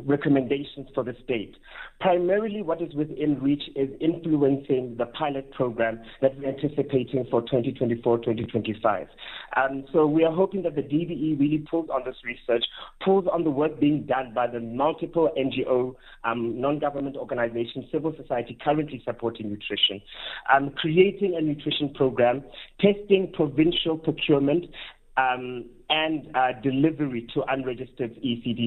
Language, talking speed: English, 135 wpm